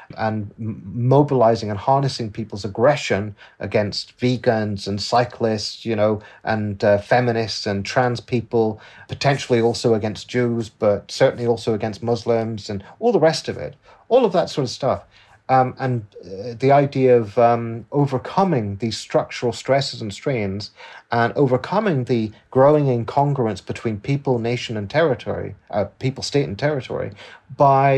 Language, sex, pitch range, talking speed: English, male, 105-125 Hz, 145 wpm